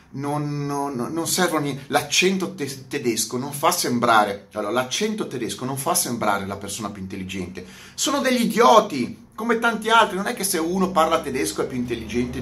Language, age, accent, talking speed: Italian, 30-49, native, 185 wpm